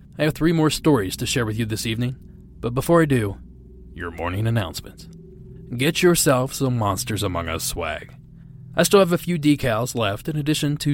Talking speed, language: 190 wpm, English